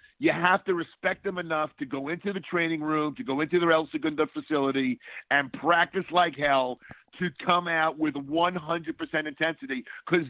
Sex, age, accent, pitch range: male, 50-69, American, 145-170 Hz